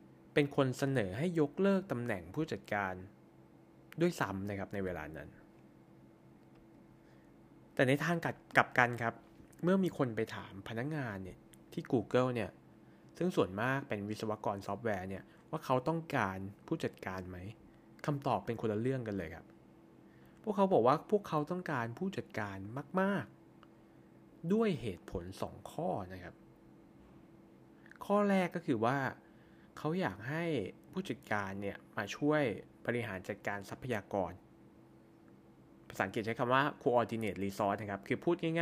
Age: 20-39